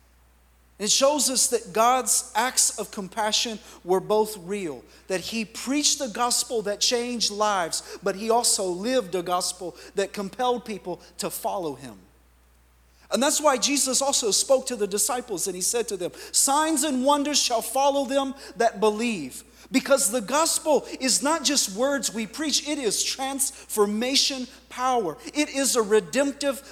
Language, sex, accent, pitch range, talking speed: English, male, American, 210-270 Hz, 155 wpm